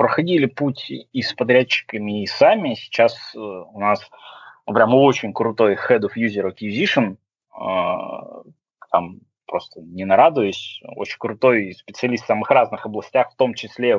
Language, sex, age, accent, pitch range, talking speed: Russian, male, 20-39, native, 100-125 Hz, 135 wpm